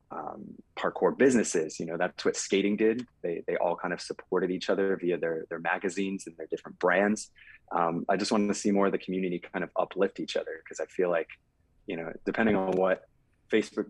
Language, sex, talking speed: English, male, 215 wpm